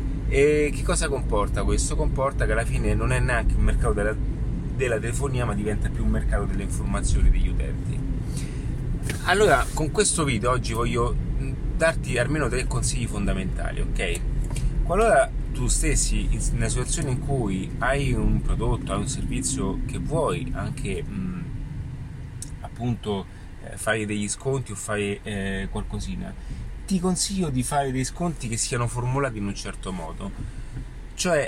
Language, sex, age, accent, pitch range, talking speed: Italian, male, 30-49, native, 110-135 Hz, 145 wpm